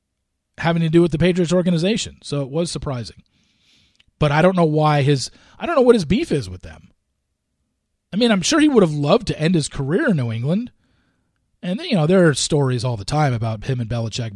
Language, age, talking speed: English, 40-59, 230 wpm